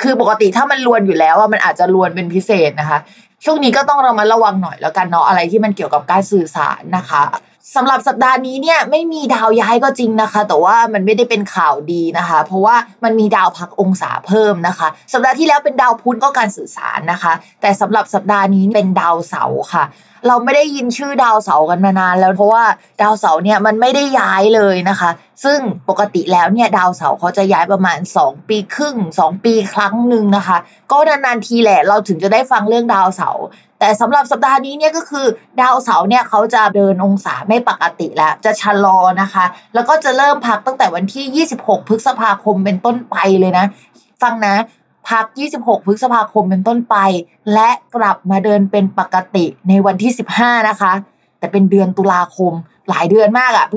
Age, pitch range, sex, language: 20-39, 190-240 Hz, female, Thai